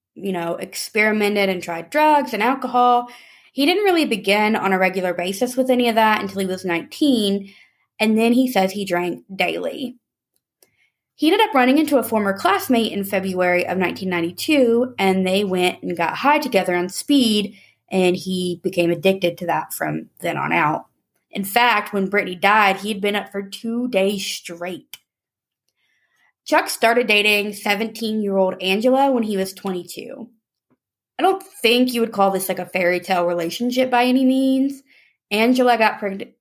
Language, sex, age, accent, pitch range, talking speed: English, female, 20-39, American, 185-240 Hz, 165 wpm